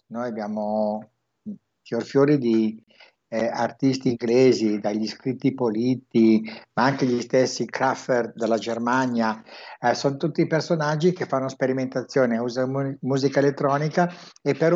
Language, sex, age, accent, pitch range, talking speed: Italian, male, 60-79, native, 115-150 Hz, 120 wpm